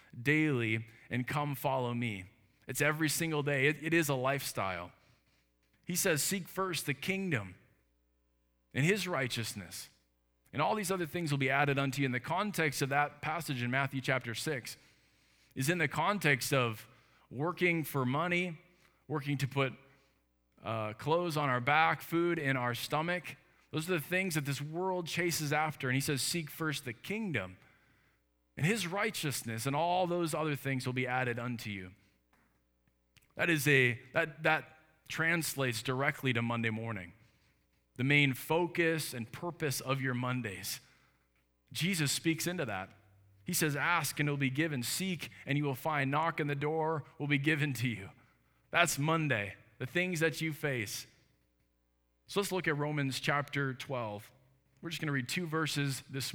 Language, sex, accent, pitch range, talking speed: English, male, American, 115-160 Hz, 170 wpm